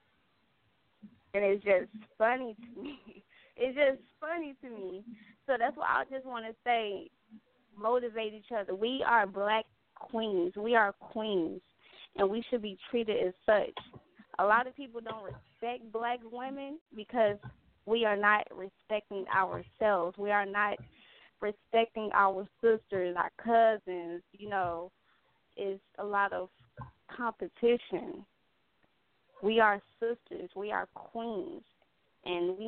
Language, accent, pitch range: English, American, 200-245 Hz